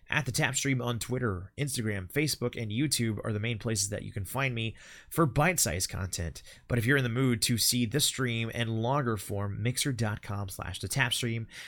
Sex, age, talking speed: male, 30-49, 180 wpm